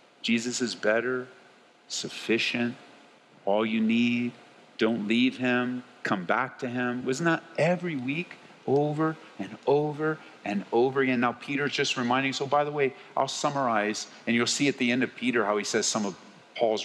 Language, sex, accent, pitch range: English, male, American, 110-140 Hz